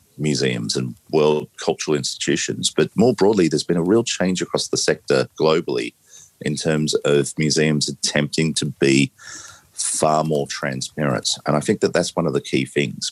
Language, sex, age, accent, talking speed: English, male, 40-59, Australian, 170 wpm